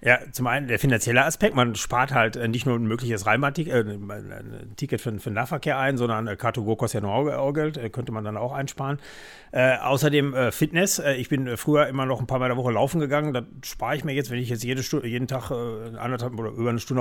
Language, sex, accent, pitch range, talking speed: German, male, German, 115-140 Hz, 220 wpm